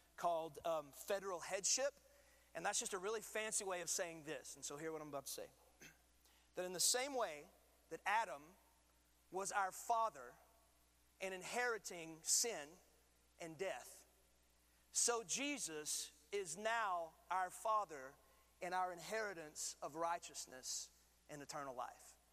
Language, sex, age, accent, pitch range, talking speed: English, male, 30-49, American, 160-220 Hz, 135 wpm